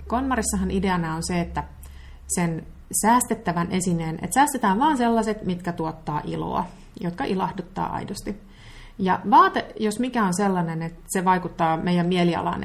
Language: Finnish